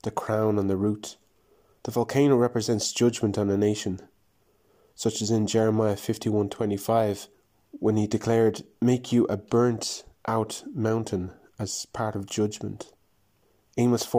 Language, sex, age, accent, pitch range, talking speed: English, male, 20-39, Irish, 105-120 Hz, 130 wpm